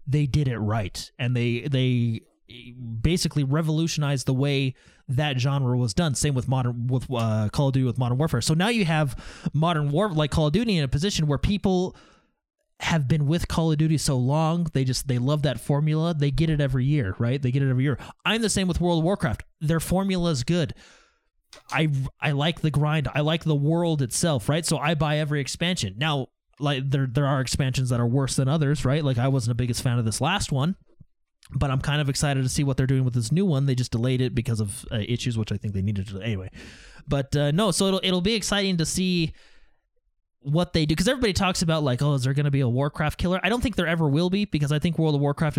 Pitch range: 130-160 Hz